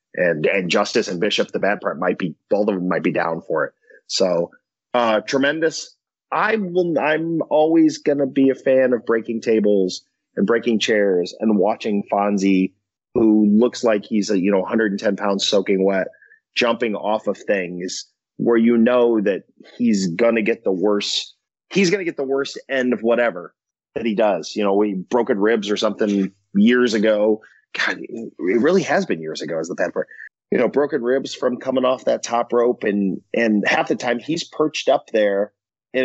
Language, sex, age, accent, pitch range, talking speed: English, male, 30-49, American, 100-130 Hz, 195 wpm